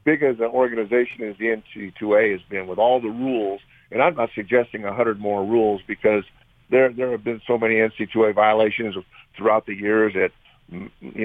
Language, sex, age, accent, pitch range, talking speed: English, male, 50-69, American, 105-125 Hz, 220 wpm